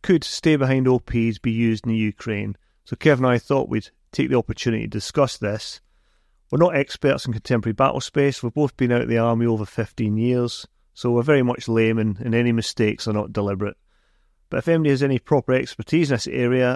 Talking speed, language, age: 210 wpm, English, 40-59